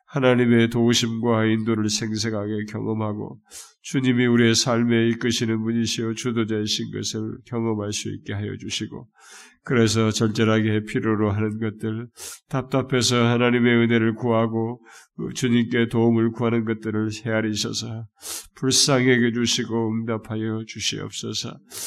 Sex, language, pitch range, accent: male, Korean, 115-125 Hz, native